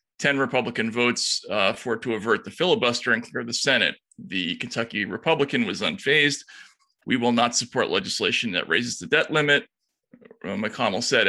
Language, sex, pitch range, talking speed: English, male, 130-165 Hz, 165 wpm